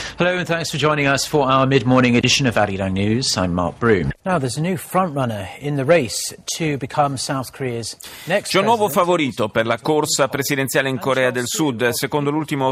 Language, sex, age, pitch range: Italian, male, 40-59, 110-150 Hz